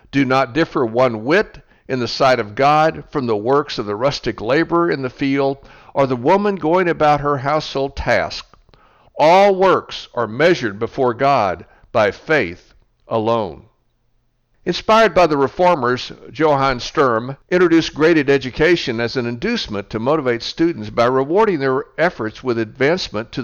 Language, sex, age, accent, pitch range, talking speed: English, male, 60-79, American, 120-155 Hz, 150 wpm